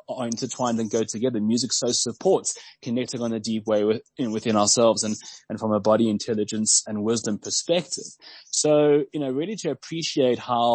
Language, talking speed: English, 185 wpm